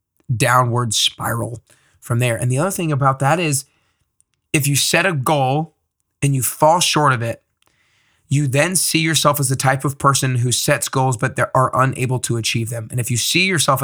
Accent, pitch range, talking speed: American, 120-140 Hz, 200 wpm